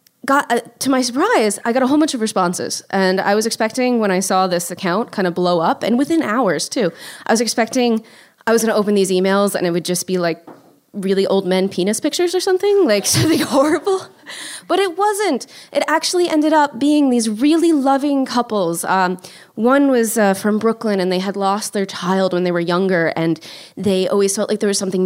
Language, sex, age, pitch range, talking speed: English, female, 20-39, 185-255 Hz, 220 wpm